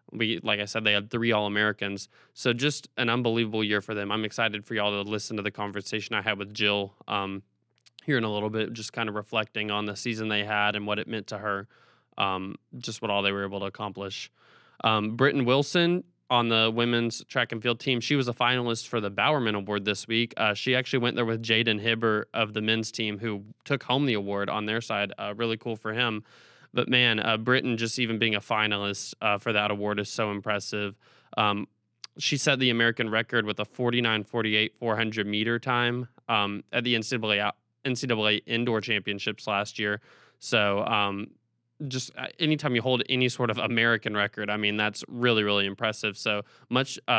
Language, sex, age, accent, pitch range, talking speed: English, male, 20-39, American, 105-120 Hz, 205 wpm